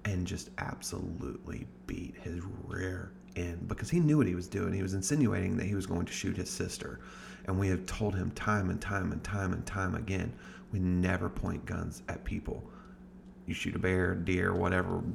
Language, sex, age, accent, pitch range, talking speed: English, male, 30-49, American, 90-110 Hz, 200 wpm